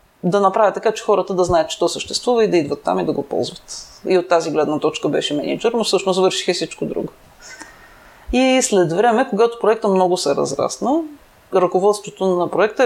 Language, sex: Bulgarian, female